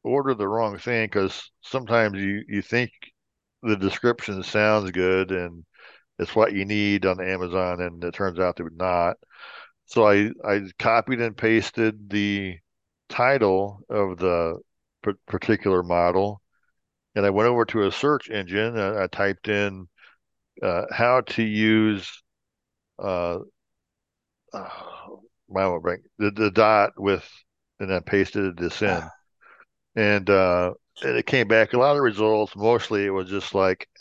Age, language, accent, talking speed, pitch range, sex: 60-79, English, American, 145 wpm, 95-110 Hz, male